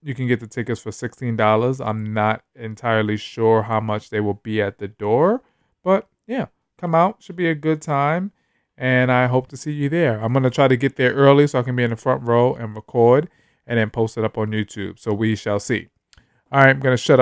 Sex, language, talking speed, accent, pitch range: male, English, 245 wpm, American, 110-130 Hz